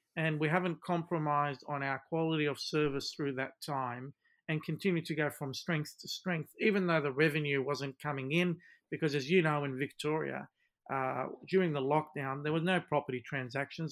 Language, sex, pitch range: English, male, 135-160 Hz